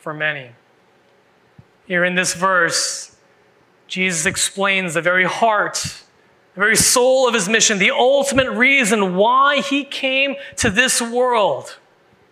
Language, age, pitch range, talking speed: English, 30-49, 185-240 Hz, 125 wpm